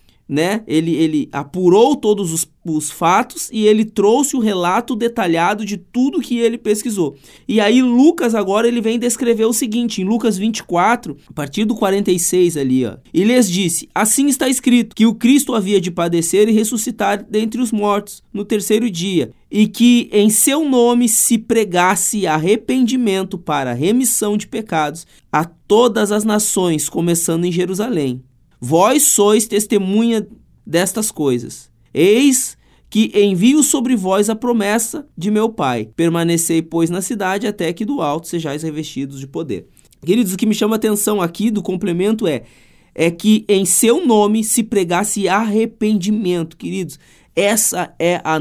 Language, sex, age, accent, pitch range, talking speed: Portuguese, male, 20-39, Brazilian, 170-230 Hz, 155 wpm